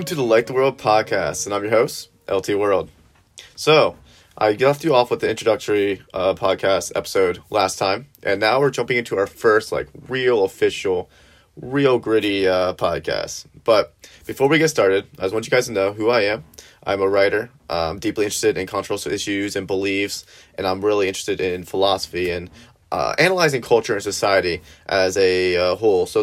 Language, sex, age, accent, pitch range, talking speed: English, male, 30-49, American, 95-120 Hz, 190 wpm